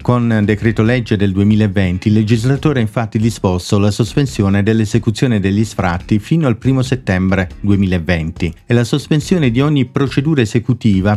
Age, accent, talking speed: 50-69, native, 145 wpm